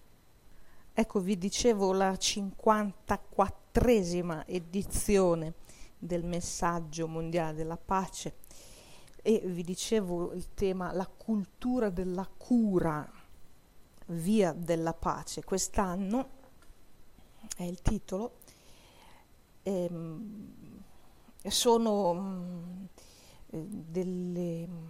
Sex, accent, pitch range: female, native, 170-200 Hz